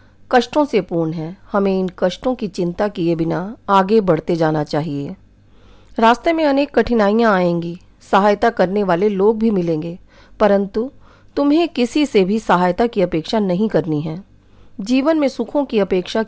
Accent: native